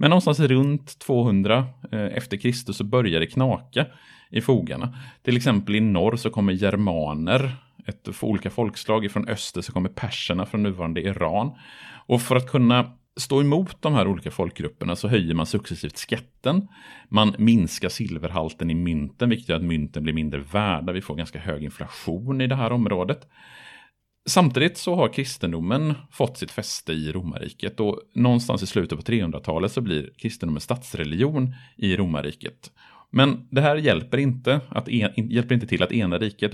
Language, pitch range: Swedish, 90-130 Hz